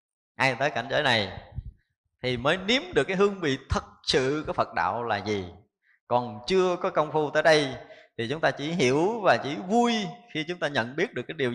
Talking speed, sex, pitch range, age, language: 220 wpm, male, 140-215 Hz, 20-39, Vietnamese